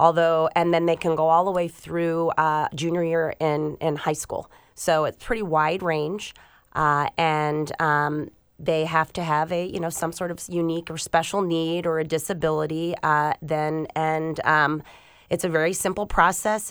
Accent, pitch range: American, 155-170 Hz